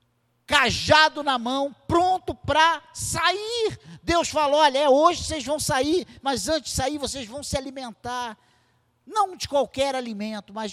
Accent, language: Brazilian, Portuguese